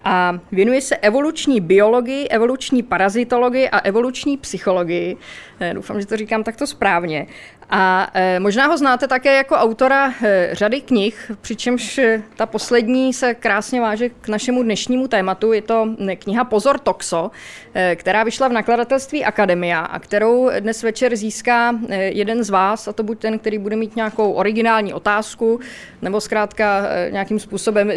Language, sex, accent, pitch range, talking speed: Czech, female, native, 205-255 Hz, 145 wpm